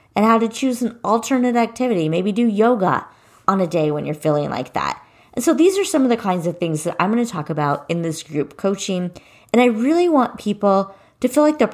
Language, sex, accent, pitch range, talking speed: English, female, American, 170-230 Hz, 235 wpm